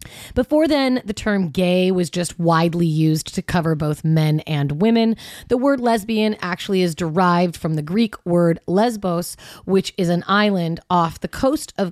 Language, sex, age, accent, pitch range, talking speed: English, female, 30-49, American, 165-210 Hz, 170 wpm